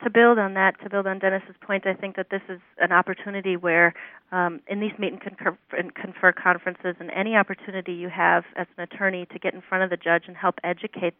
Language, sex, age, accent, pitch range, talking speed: English, female, 30-49, American, 175-195 Hz, 235 wpm